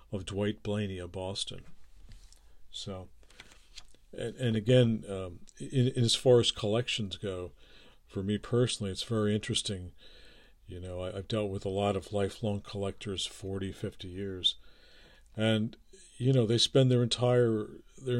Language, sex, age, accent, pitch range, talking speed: English, male, 50-69, American, 95-115 Hz, 150 wpm